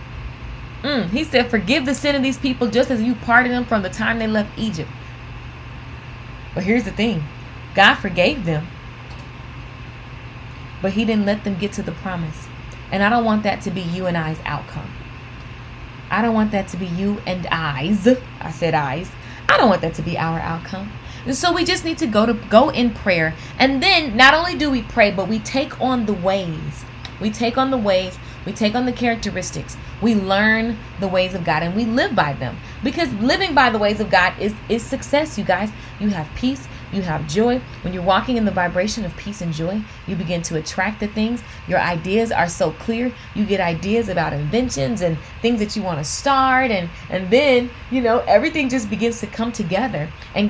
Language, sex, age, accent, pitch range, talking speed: English, female, 20-39, American, 175-245 Hz, 210 wpm